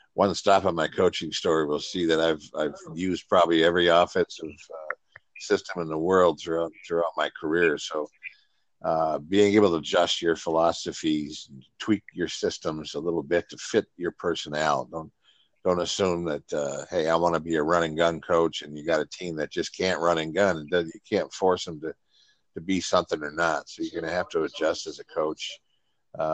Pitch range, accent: 80-90 Hz, American